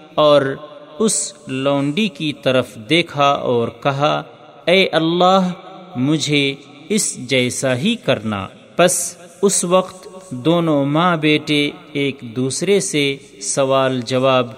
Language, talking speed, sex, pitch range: Urdu, 105 wpm, male, 135-180 Hz